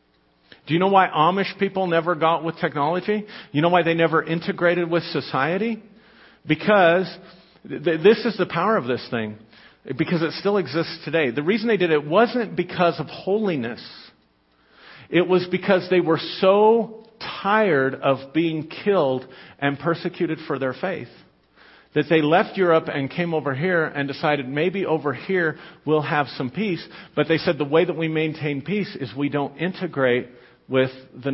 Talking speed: 165 wpm